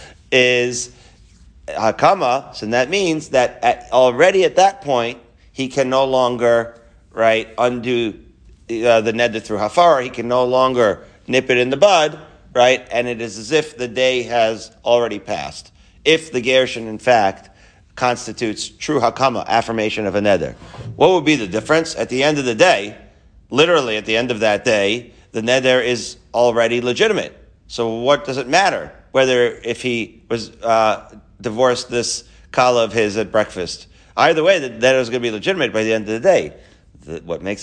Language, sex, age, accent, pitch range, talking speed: English, male, 40-59, American, 115-140 Hz, 180 wpm